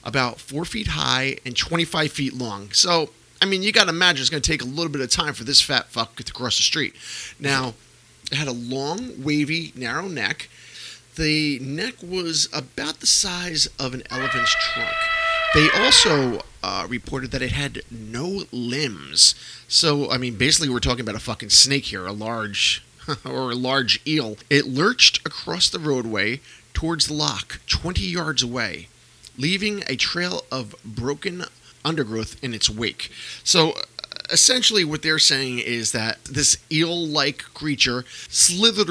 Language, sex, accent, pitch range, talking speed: English, male, American, 120-160 Hz, 160 wpm